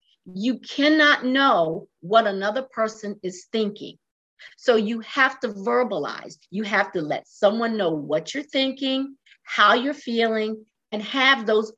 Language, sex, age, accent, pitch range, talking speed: English, female, 50-69, American, 180-260 Hz, 145 wpm